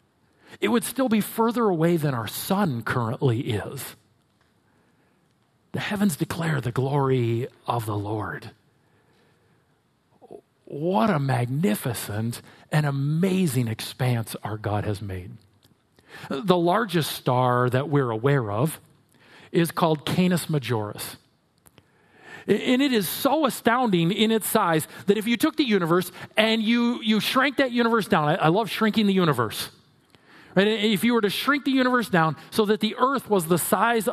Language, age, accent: English, 40-59, American